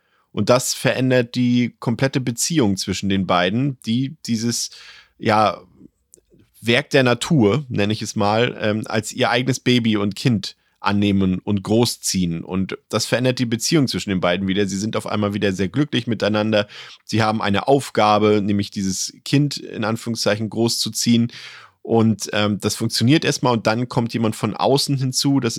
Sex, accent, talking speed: male, German, 160 wpm